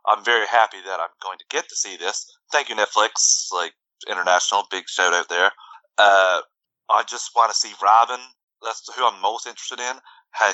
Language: English